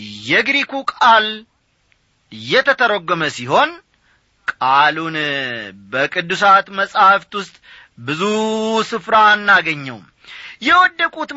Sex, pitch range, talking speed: male, 155-245 Hz, 65 wpm